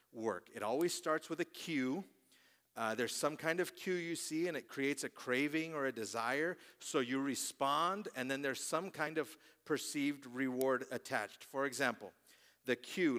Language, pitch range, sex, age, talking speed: English, 130-180 Hz, male, 50-69, 175 wpm